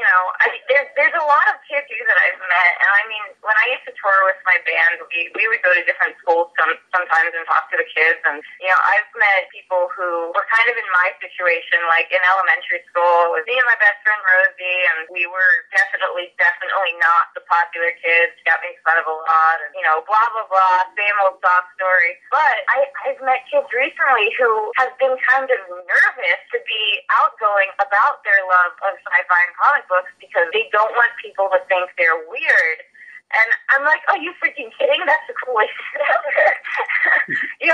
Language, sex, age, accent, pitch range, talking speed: English, female, 20-39, American, 180-285 Hz, 210 wpm